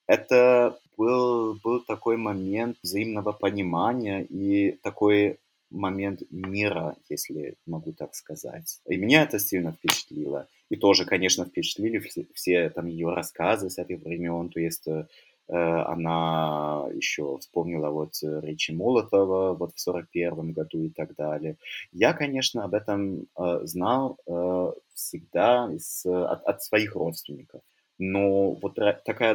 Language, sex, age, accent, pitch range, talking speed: Russian, male, 20-39, native, 85-105 Hz, 125 wpm